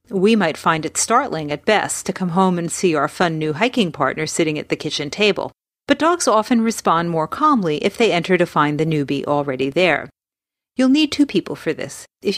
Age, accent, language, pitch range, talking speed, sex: 40-59, American, English, 160-210 Hz, 215 wpm, female